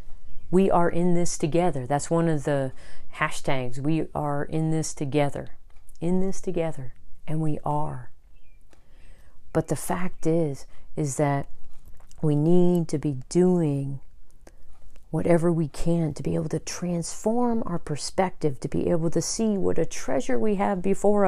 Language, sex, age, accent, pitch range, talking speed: English, female, 40-59, American, 130-165 Hz, 150 wpm